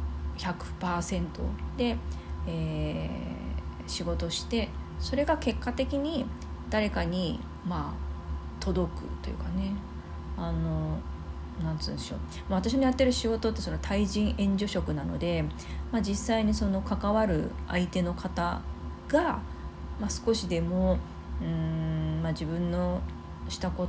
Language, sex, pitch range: Japanese, female, 75-90 Hz